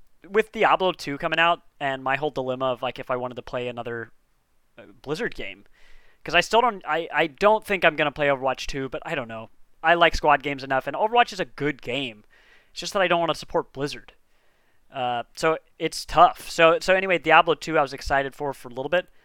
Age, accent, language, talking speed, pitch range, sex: 30-49, American, English, 230 wpm, 135-185 Hz, male